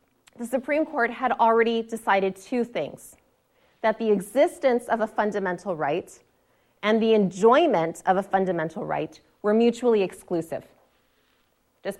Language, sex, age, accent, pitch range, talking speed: English, female, 30-49, American, 195-255 Hz, 130 wpm